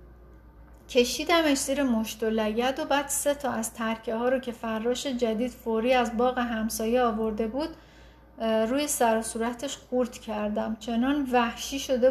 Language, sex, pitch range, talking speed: Persian, female, 225-275 Hz, 145 wpm